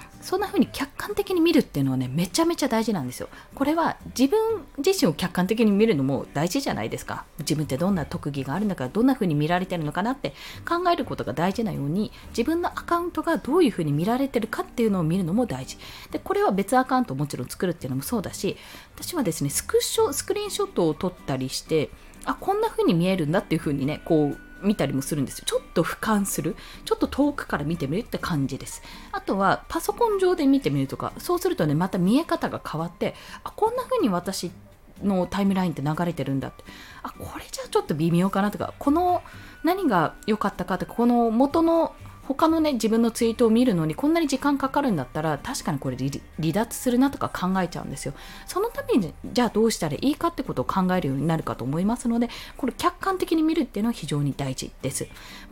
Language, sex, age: Japanese, female, 20-39